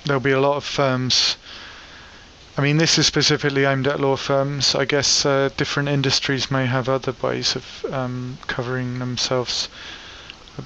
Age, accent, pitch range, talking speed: 30-49, British, 125-140 Hz, 165 wpm